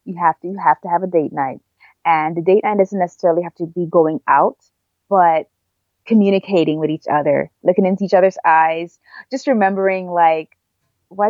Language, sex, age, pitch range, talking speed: English, female, 20-39, 165-225 Hz, 185 wpm